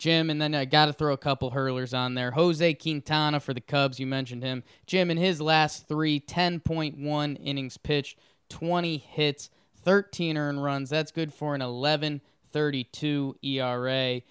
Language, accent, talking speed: English, American, 165 wpm